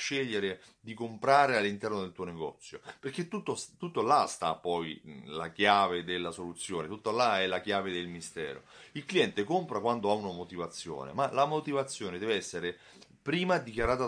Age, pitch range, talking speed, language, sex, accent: 30-49, 95-125 Hz, 160 wpm, Italian, male, native